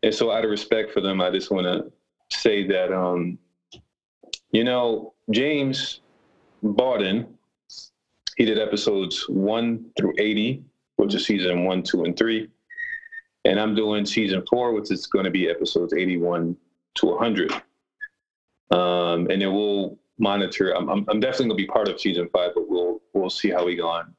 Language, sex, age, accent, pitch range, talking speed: English, male, 30-49, American, 100-135 Hz, 175 wpm